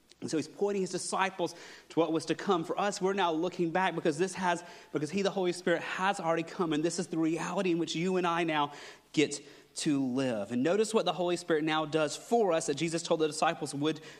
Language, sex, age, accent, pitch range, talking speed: English, male, 30-49, American, 150-190 Hz, 245 wpm